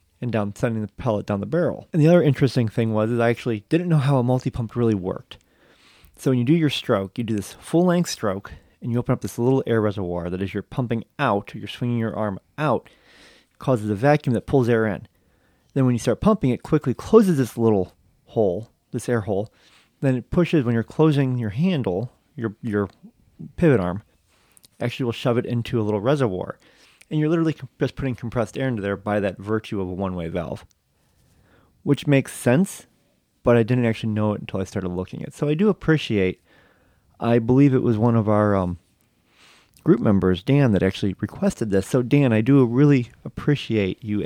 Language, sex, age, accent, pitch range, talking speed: English, male, 30-49, American, 105-135 Hz, 205 wpm